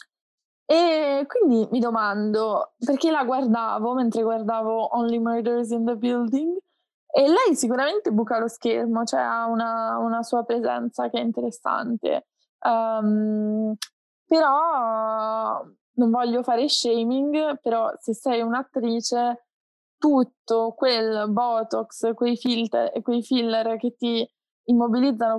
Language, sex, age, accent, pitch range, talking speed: Italian, female, 20-39, native, 225-250 Hz, 110 wpm